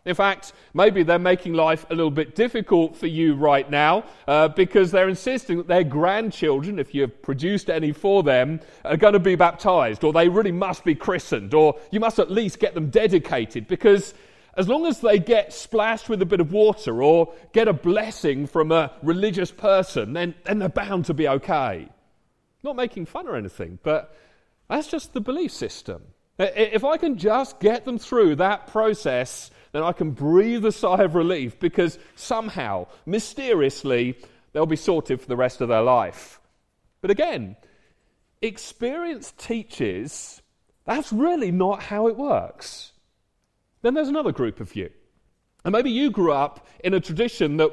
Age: 40-59